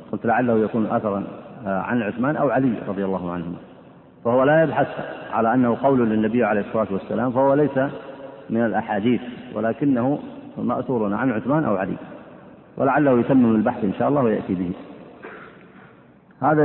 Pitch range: 110-135 Hz